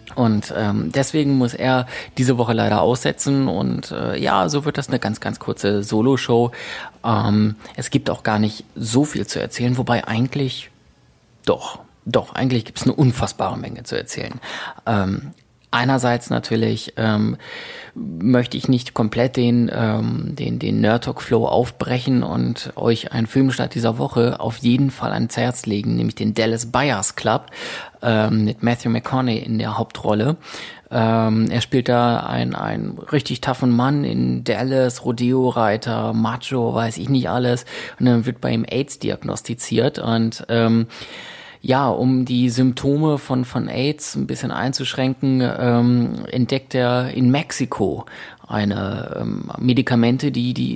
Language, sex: German, male